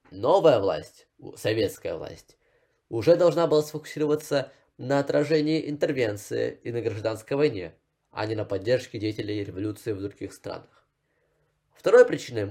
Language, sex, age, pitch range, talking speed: Russian, male, 20-39, 110-155 Hz, 125 wpm